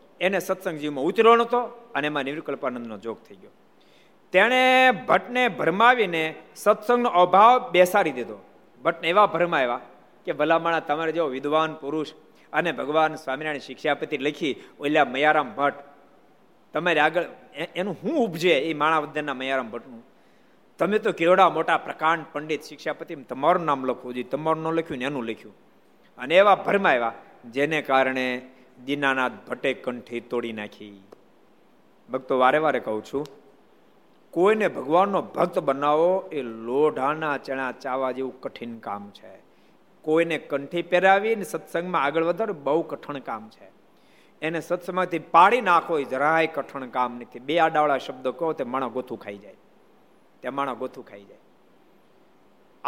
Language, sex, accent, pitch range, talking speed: Gujarati, male, native, 130-175 Hz, 130 wpm